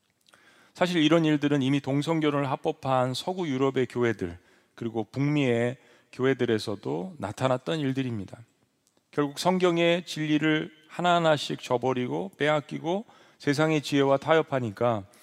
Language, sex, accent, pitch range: Korean, male, native, 125-150 Hz